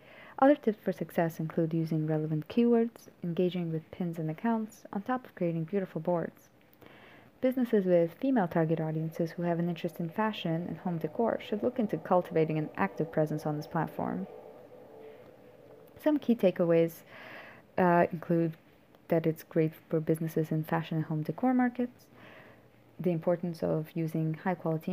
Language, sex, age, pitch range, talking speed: English, female, 20-39, 165-205 Hz, 155 wpm